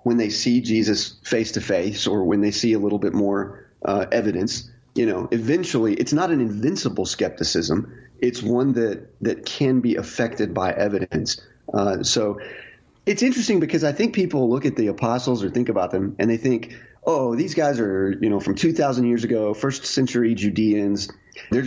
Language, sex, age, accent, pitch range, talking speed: English, male, 30-49, American, 105-125 Hz, 185 wpm